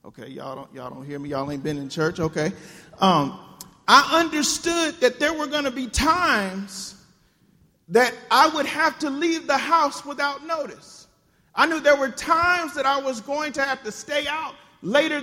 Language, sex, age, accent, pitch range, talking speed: English, male, 40-59, American, 225-330 Hz, 185 wpm